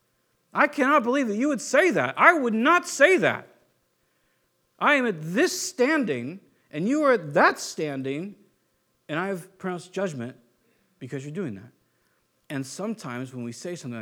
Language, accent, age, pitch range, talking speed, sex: English, American, 50-69, 120-180 Hz, 165 wpm, male